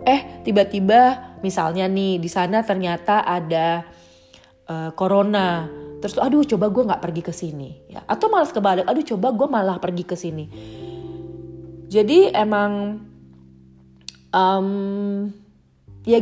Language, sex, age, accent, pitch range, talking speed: Indonesian, female, 30-49, native, 155-200 Hz, 120 wpm